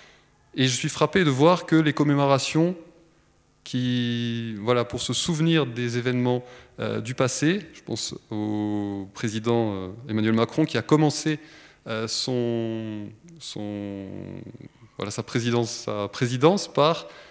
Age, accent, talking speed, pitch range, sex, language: 20-39, French, 130 wpm, 120-165 Hz, male, French